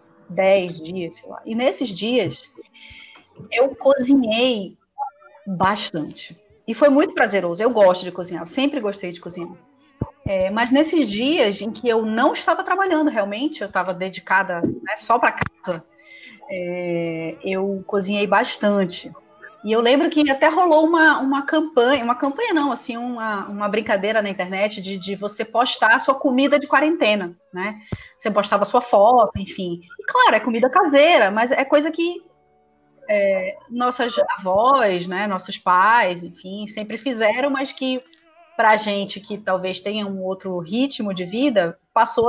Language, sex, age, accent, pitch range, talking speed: Portuguese, female, 30-49, Brazilian, 190-275 Hz, 155 wpm